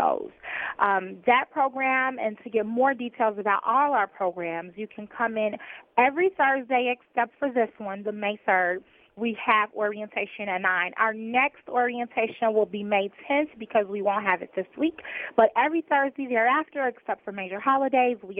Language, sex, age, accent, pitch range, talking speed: English, female, 30-49, American, 205-255 Hz, 175 wpm